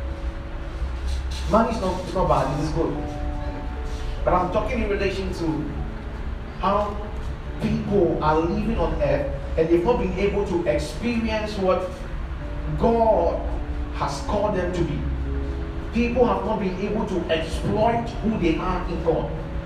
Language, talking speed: English, 135 wpm